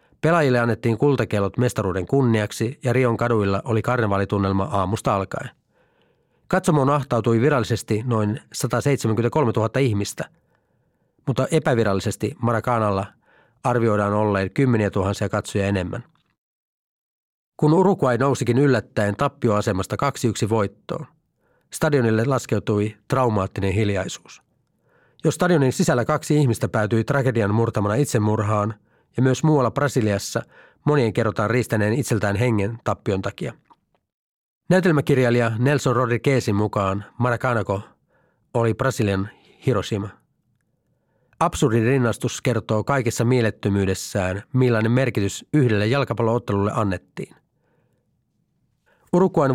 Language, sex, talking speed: Finnish, male, 95 wpm